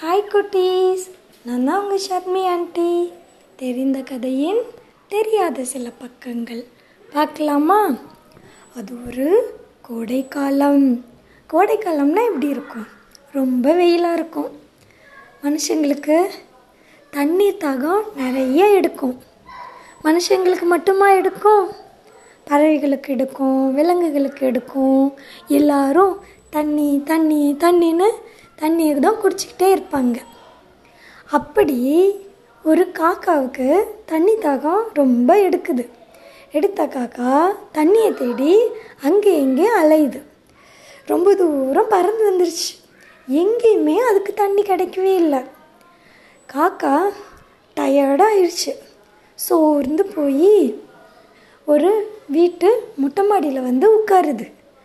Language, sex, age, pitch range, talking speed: Tamil, female, 20-39, 275-390 Hz, 80 wpm